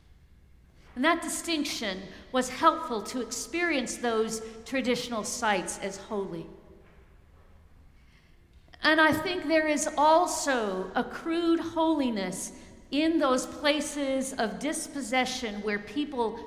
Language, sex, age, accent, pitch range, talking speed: English, female, 50-69, American, 185-280 Hz, 100 wpm